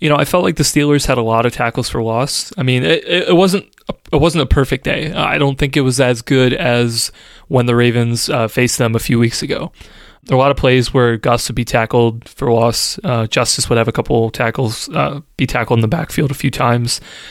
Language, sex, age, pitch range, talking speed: English, male, 20-39, 120-145 Hz, 240 wpm